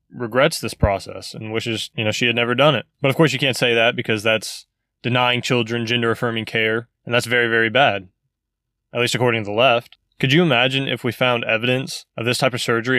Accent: American